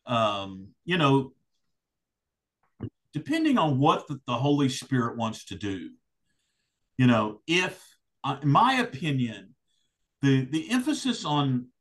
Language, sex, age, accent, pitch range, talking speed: English, male, 50-69, American, 125-165 Hz, 115 wpm